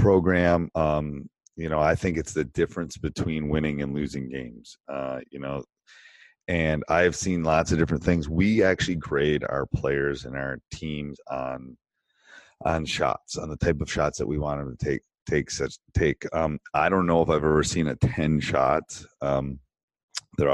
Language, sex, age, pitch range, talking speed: English, male, 30-49, 70-80 Hz, 180 wpm